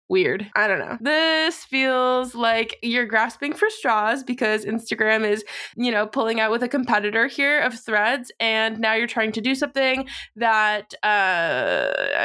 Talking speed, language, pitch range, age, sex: 160 wpm, English, 220-270 Hz, 20-39, female